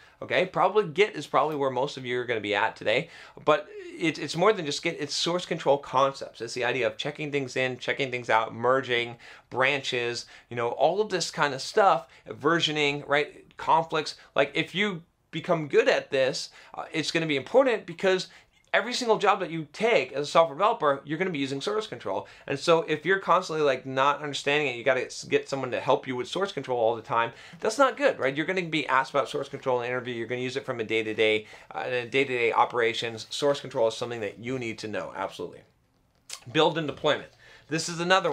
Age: 30-49